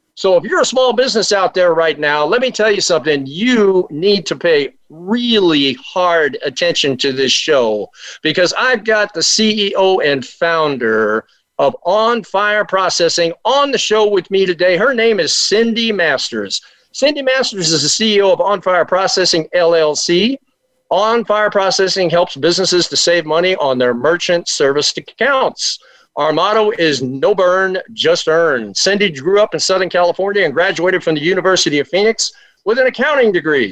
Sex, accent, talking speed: male, American, 165 wpm